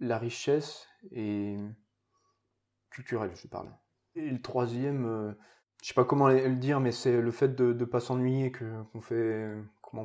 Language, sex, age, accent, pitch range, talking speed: French, male, 20-39, French, 105-125 Hz, 180 wpm